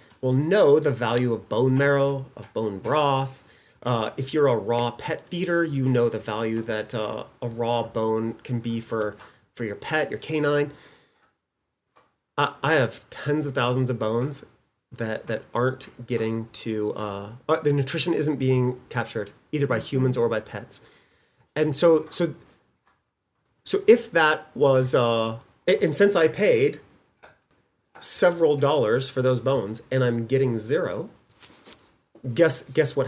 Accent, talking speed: American, 150 wpm